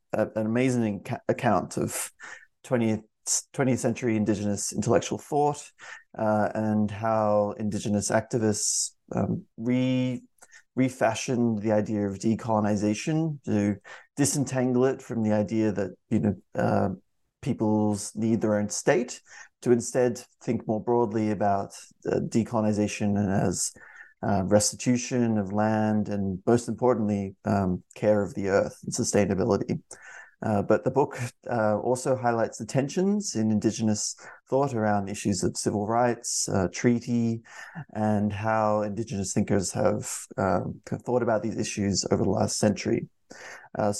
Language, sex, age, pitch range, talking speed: English, male, 30-49, 105-120 Hz, 130 wpm